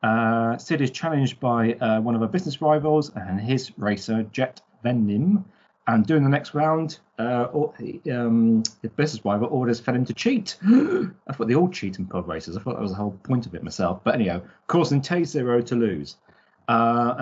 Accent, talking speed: British, 200 wpm